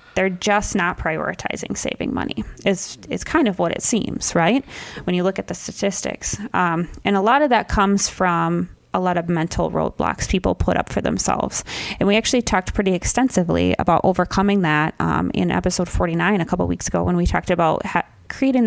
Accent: American